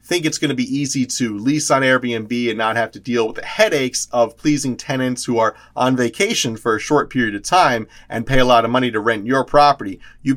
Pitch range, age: 115-155 Hz, 30-49